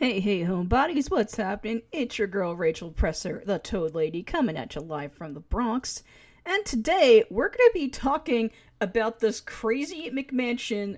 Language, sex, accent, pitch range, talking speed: English, female, American, 190-230 Hz, 170 wpm